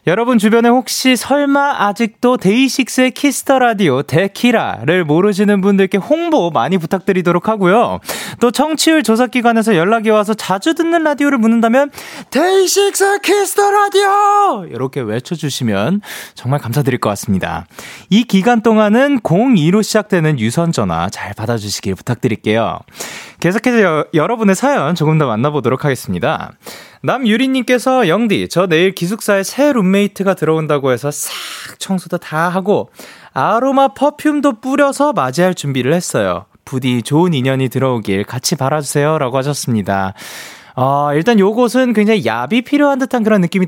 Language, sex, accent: Korean, male, native